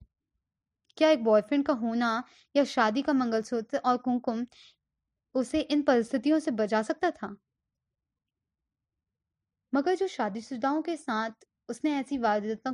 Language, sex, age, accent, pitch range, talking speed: Hindi, female, 20-39, native, 220-275 Hz, 130 wpm